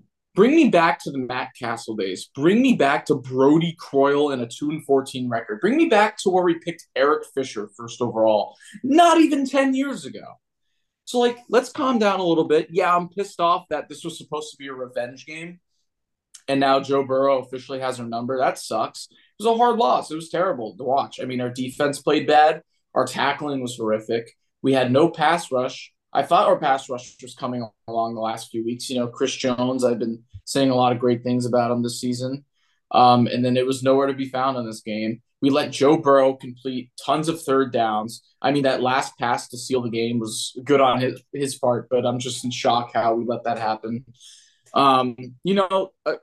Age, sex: 20-39, male